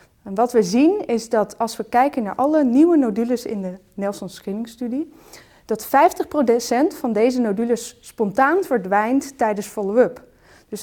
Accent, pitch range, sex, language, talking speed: Dutch, 210-265 Hz, female, Dutch, 145 wpm